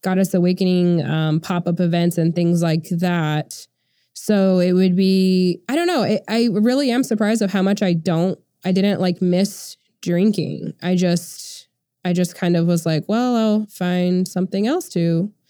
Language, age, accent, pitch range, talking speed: English, 20-39, American, 175-205 Hz, 175 wpm